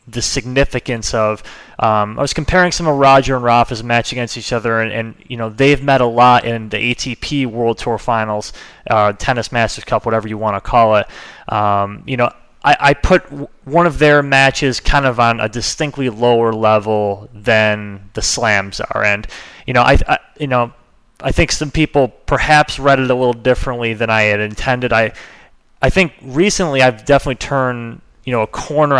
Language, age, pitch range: English, 20-39, 110-135 Hz